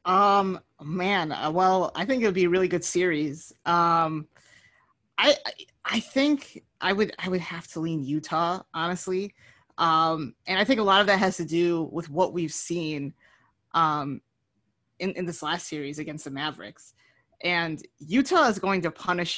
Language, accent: English, American